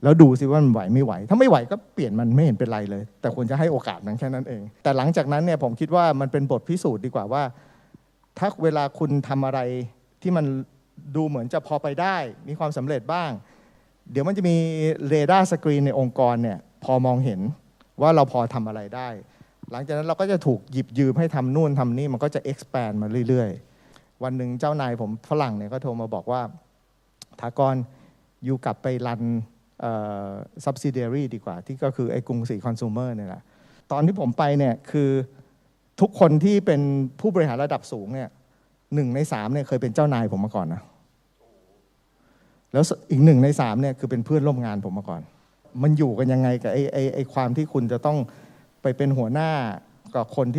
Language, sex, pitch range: Thai, male, 120-150 Hz